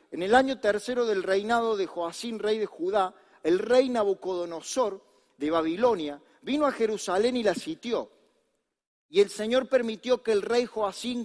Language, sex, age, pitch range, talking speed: Spanish, male, 40-59, 190-250 Hz, 160 wpm